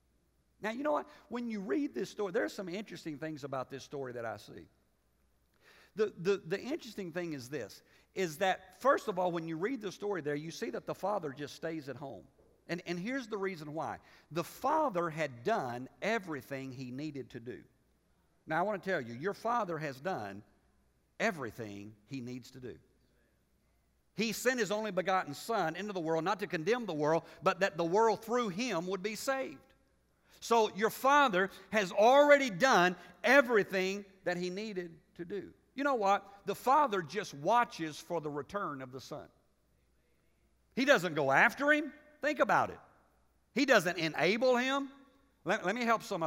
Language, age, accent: English, 50-69, American